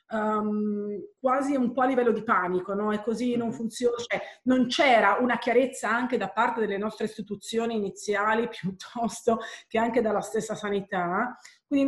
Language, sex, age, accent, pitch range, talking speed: Italian, female, 30-49, native, 205-260 Hz, 155 wpm